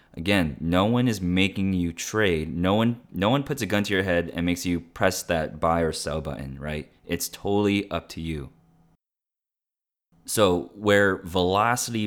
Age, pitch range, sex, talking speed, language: 20-39, 85-105 Hz, male, 175 wpm, English